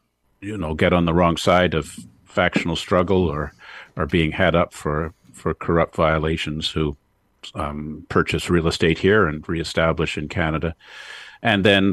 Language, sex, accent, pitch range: English, male, American, 80-95 Hz